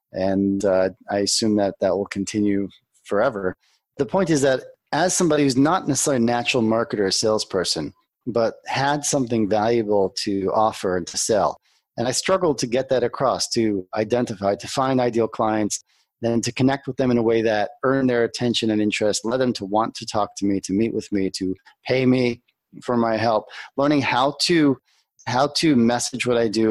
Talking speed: 195 wpm